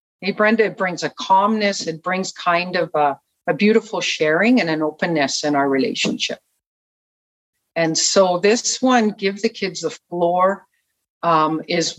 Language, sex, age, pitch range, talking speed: English, female, 50-69, 170-225 Hz, 155 wpm